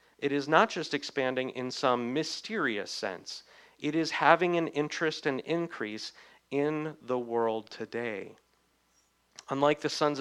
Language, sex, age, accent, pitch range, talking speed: English, male, 40-59, American, 115-150 Hz, 135 wpm